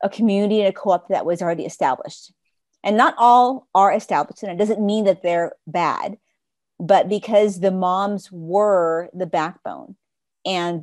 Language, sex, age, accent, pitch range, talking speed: English, female, 40-59, American, 170-205 Hz, 160 wpm